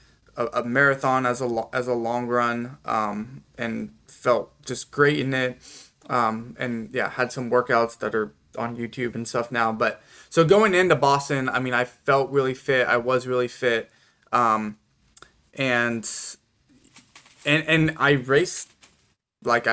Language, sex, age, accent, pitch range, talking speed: English, male, 20-39, American, 120-145 Hz, 150 wpm